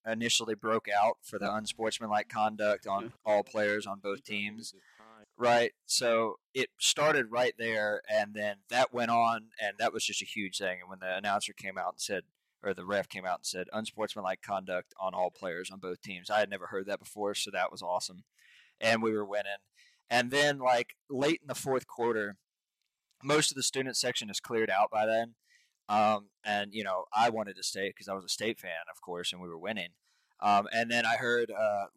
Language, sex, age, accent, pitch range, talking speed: English, male, 20-39, American, 100-125 Hz, 210 wpm